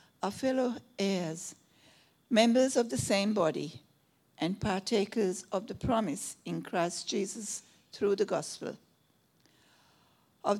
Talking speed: 115 wpm